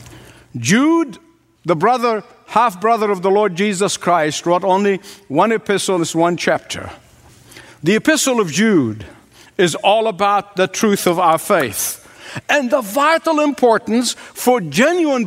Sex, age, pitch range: male, 60-79, 200-265 Hz